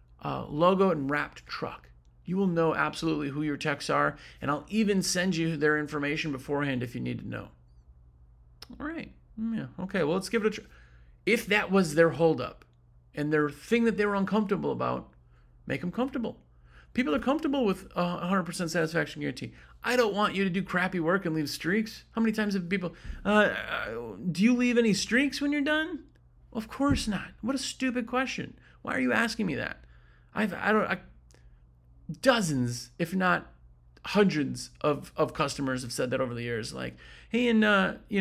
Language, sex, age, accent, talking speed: English, male, 40-59, American, 190 wpm